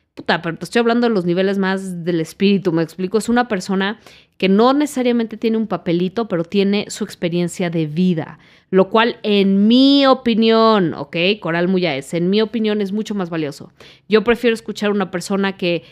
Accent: Mexican